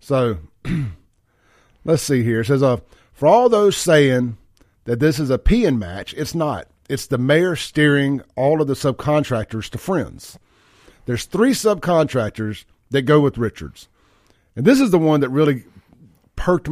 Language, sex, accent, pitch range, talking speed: English, male, American, 115-165 Hz, 160 wpm